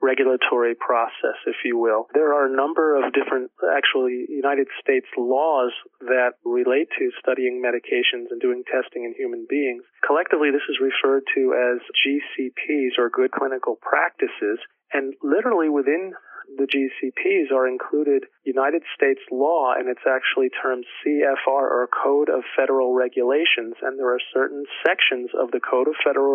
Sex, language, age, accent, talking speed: male, English, 40-59, American, 155 wpm